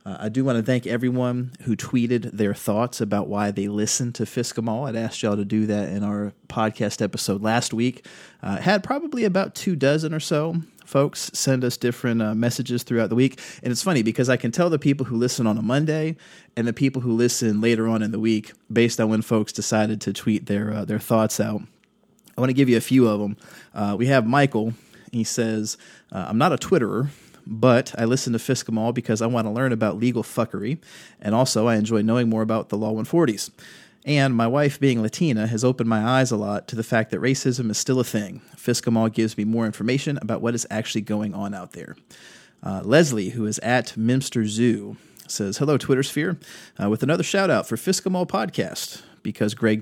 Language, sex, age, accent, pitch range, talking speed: English, male, 30-49, American, 110-130 Hz, 215 wpm